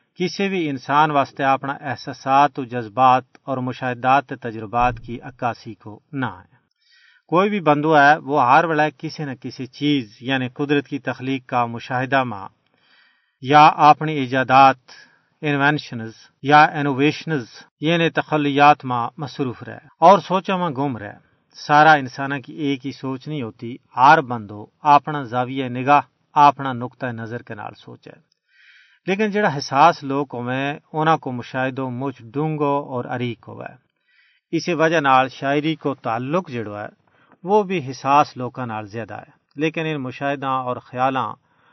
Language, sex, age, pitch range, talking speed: Urdu, male, 40-59, 125-150 Hz, 140 wpm